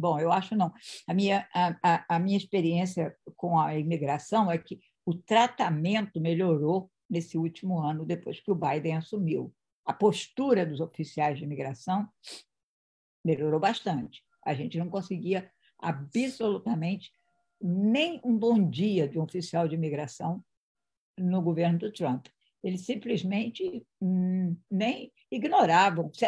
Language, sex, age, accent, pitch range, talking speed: English, female, 60-79, Brazilian, 160-205 Hz, 125 wpm